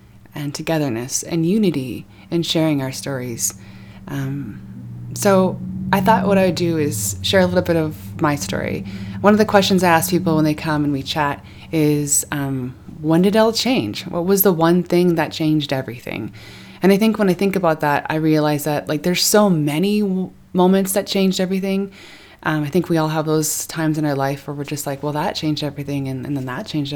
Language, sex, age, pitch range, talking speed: English, female, 20-39, 140-180 Hz, 215 wpm